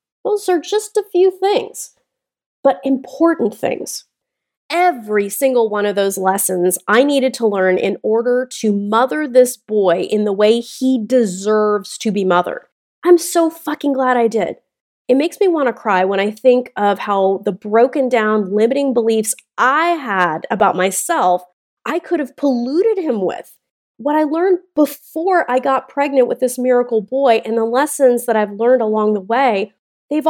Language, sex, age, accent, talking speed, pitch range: English, female, 30-49, American, 170 wpm, 215-295 Hz